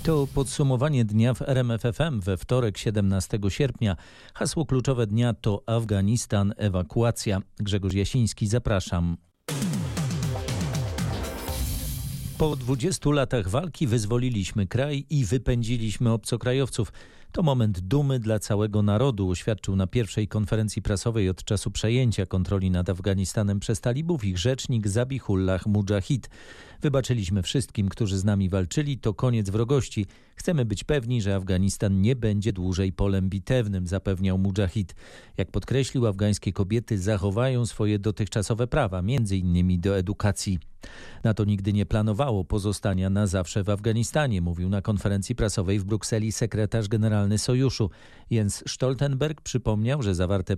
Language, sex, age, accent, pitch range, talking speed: Polish, male, 40-59, native, 100-125 Hz, 125 wpm